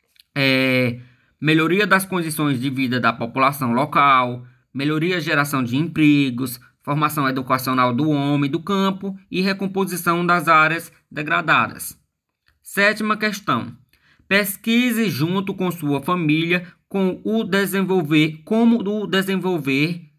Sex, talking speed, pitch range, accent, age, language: male, 115 wpm, 145-190 Hz, Brazilian, 20-39, Portuguese